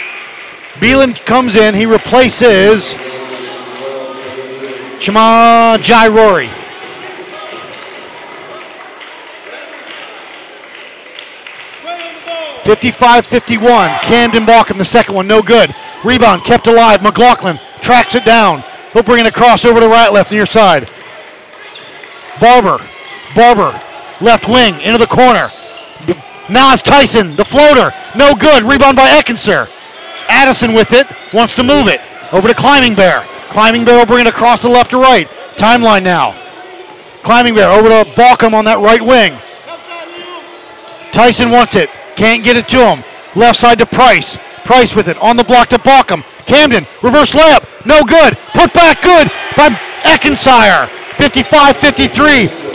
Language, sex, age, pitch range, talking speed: English, male, 40-59, 215-265 Hz, 125 wpm